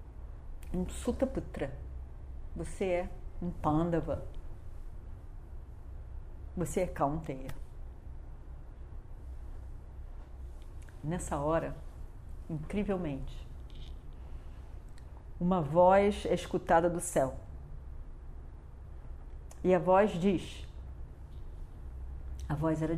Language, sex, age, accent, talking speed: Portuguese, female, 40-59, Brazilian, 70 wpm